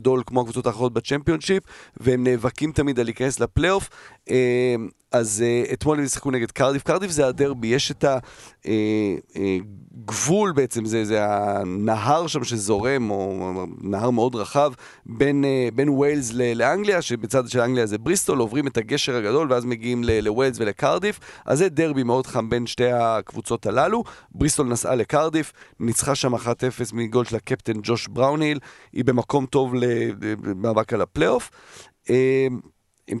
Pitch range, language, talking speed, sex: 115-135 Hz, Hebrew, 145 wpm, male